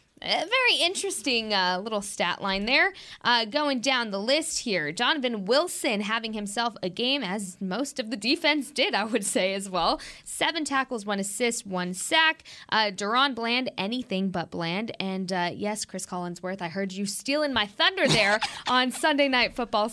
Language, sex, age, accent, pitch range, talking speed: English, female, 20-39, American, 195-270 Hz, 175 wpm